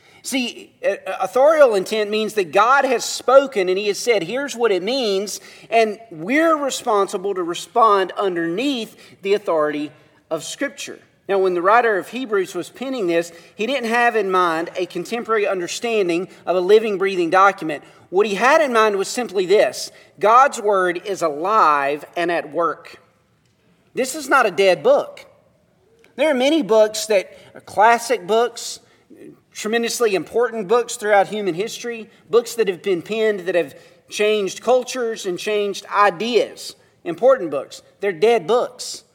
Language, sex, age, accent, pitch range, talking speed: English, male, 40-59, American, 195-255 Hz, 155 wpm